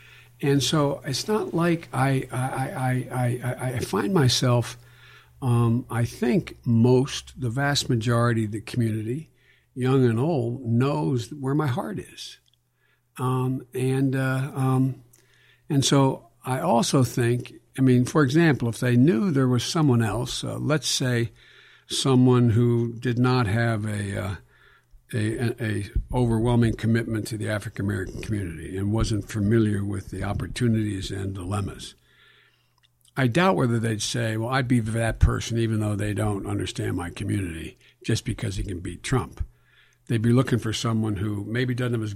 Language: English